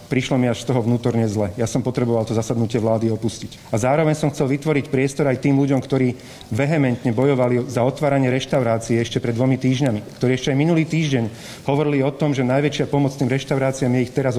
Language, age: Slovak, 30-49